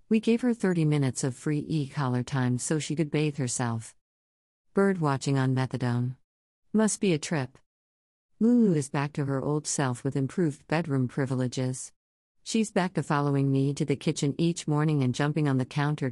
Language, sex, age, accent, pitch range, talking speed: English, female, 50-69, American, 130-165 Hz, 180 wpm